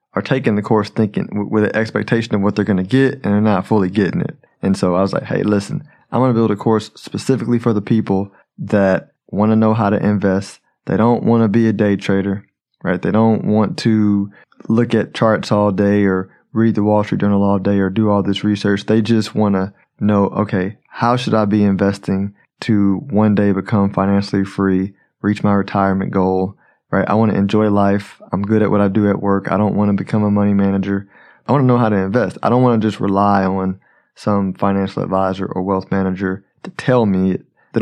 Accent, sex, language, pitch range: American, male, English, 100-110 Hz